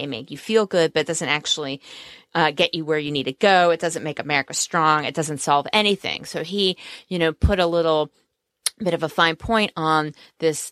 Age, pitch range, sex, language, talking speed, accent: 30-49, 145-170 Hz, female, English, 220 wpm, American